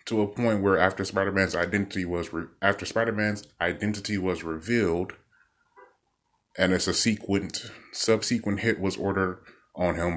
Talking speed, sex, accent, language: 140 wpm, male, American, English